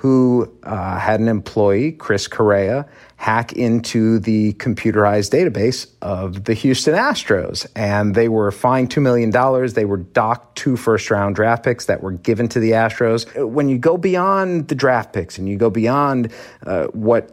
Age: 40-59